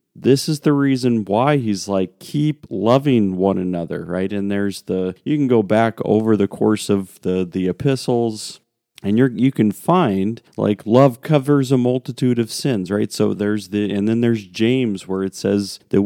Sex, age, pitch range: male, 40-59, 100-130 Hz